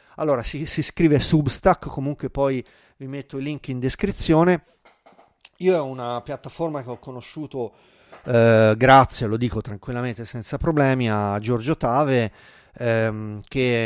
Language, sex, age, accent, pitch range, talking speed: Italian, male, 30-49, native, 115-155 Hz, 135 wpm